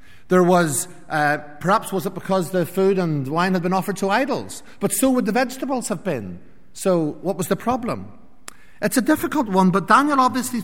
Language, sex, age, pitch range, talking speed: English, male, 50-69, 155-215 Hz, 195 wpm